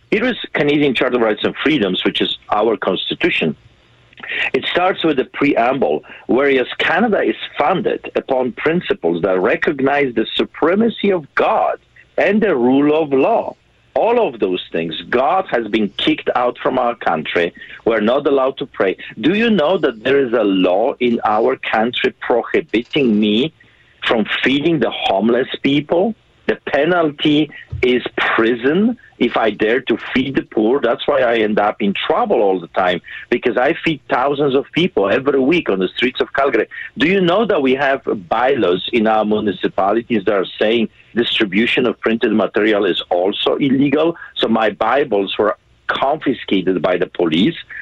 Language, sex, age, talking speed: English, male, 50-69, 165 wpm